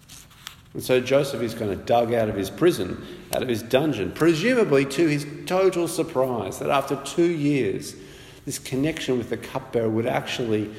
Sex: male